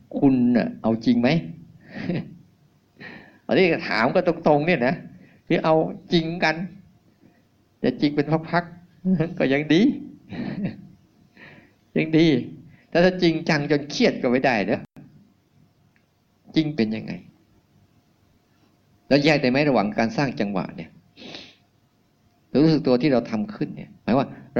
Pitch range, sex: 115-150 Hz, male